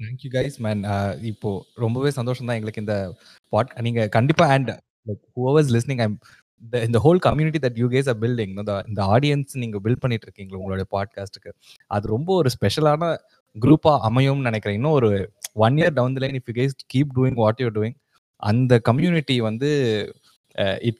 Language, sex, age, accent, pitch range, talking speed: Tamil, male, 20-39, native, 105-135 Hz, 175 wpm